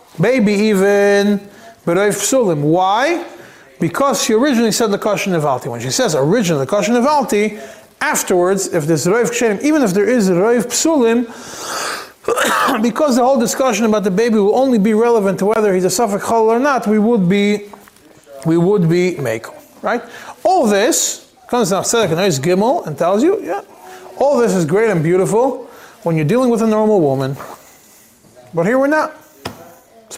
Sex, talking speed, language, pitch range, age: male, 175 wpm, English, 180-235 Hz, 30-49